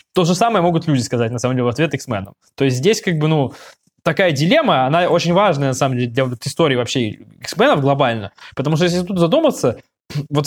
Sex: male